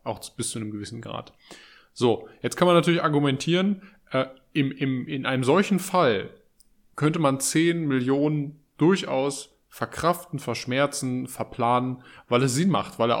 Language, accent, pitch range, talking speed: German, German, 120-150 Hz, 140 wpm